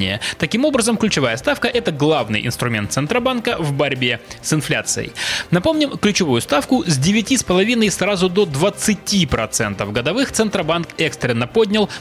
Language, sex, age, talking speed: Russian, male, 20-39, 135 wpm